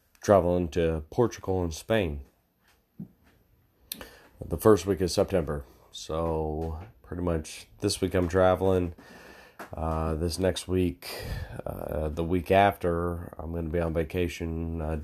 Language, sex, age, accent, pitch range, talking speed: English, male, 30-49, American, 80-95 Hz, 130 wpm